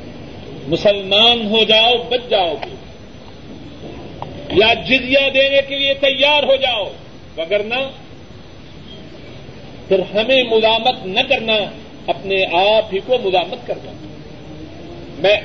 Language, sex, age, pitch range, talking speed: Urdu, male, 50-69, 200-265 Hz, 105 wpm